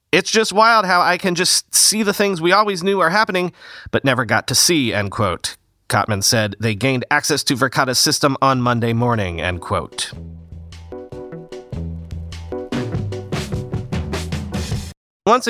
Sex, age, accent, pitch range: male, 40-59, American, 130-185 Hz